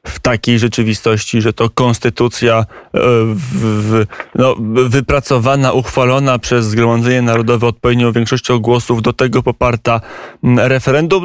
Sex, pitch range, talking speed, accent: male, 115-125 Hz, 110 wpm, native